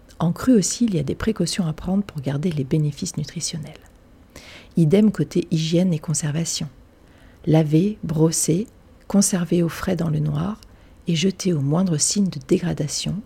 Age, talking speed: 40-59, 160 wpm